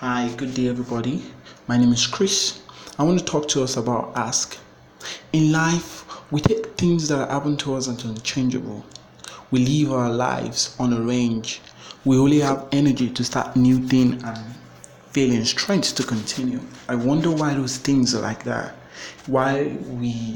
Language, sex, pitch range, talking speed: English, male, 120-140 Hz, 165 wpm